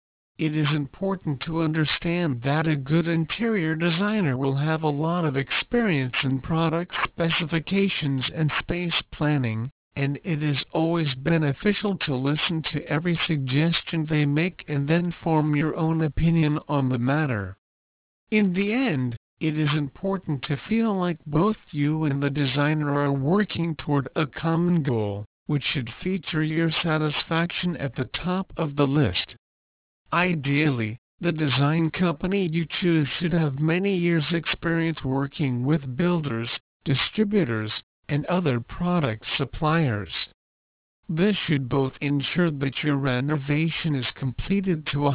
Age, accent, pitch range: 60-79, American, 140-170 Hz